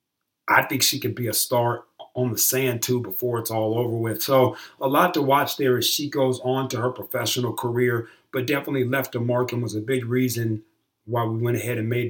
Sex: male